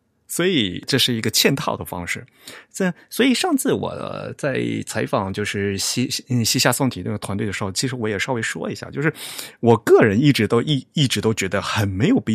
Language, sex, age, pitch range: Chinese, male, 30-49, 105-145 Hz